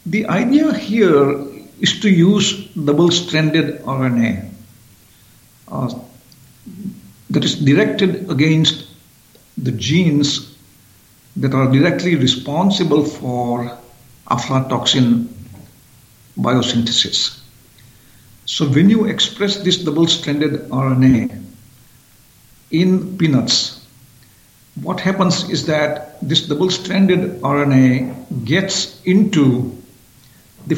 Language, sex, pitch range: English, male, 125-150 Hz